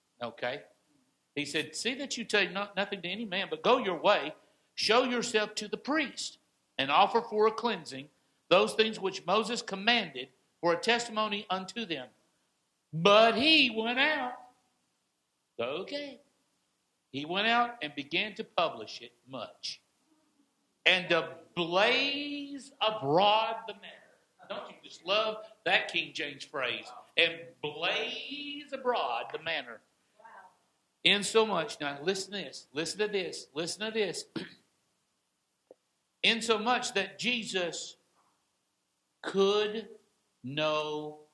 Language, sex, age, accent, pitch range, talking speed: English, male, 60-79, American, 155-235 Hz, 130 wpm